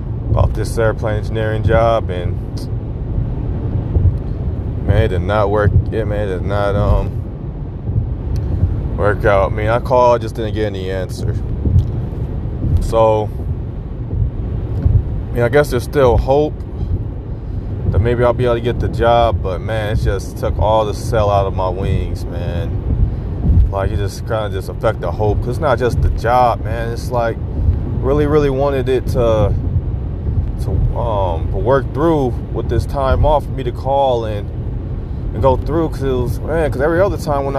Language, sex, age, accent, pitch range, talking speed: English, male, 30-49, American, 100-115 Hz, 165 wpm